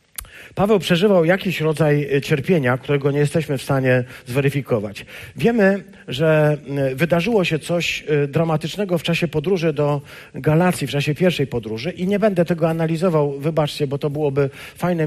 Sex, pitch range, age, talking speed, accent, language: male, 140-185 Hz, 50-69, 145 wpm, native, Polish